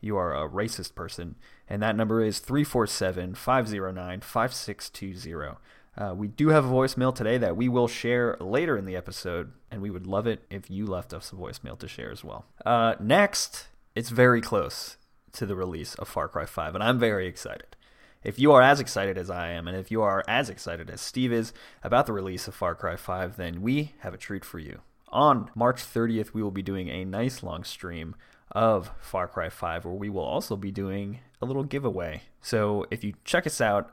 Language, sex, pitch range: English, male, 95-115 Hz